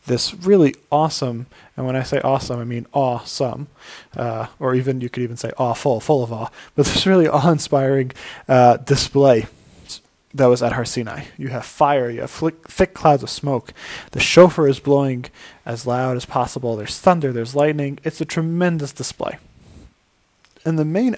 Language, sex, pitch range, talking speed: English, male, 125-160 Hz, 175 wpm